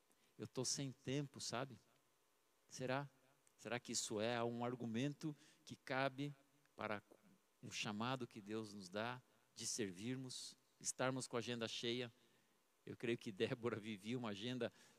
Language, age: Portuguese, 50-69